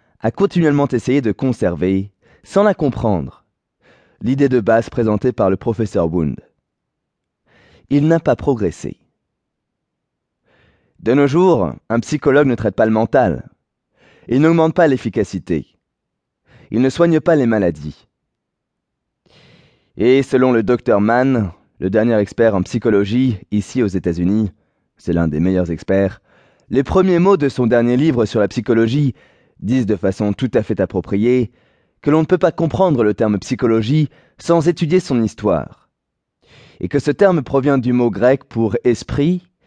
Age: 20-39